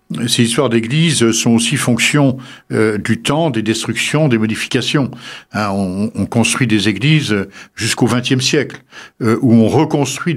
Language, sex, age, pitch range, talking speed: French, male, 60-79, 105-130 Hz, 150 wpm